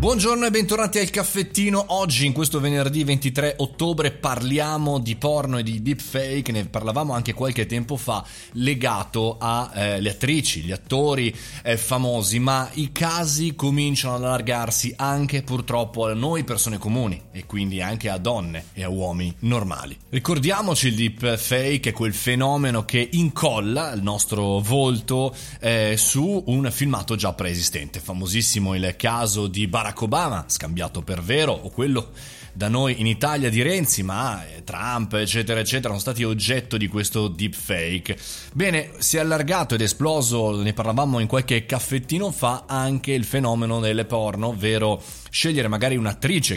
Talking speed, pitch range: 150 wpm, 105-140 Hz